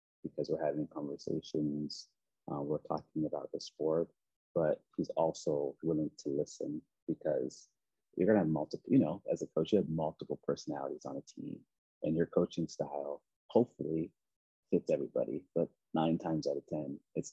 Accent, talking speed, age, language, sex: American, 165 wpm, 30-49, English, male